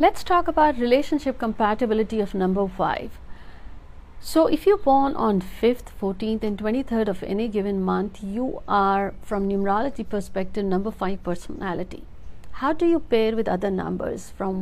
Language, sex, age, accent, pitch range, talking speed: Hindi, female, 60-79, native, 190-230 Hz, 150 wpm